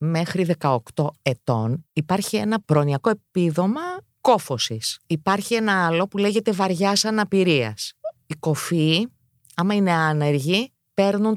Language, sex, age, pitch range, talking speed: Greek, female, 30-49, 140-200 Hz, 110 wpm